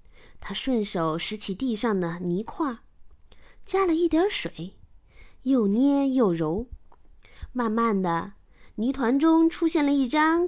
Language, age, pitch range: Chinese, 20-39, 200-320 Hz